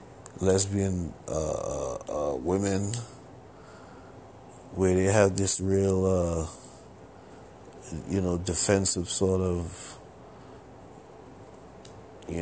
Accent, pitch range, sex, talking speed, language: American, 90-105 Hz, male, 75 wpm, English